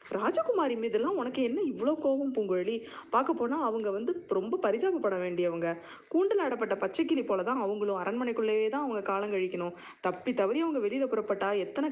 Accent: native